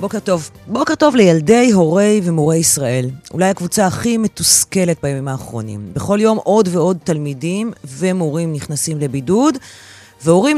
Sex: female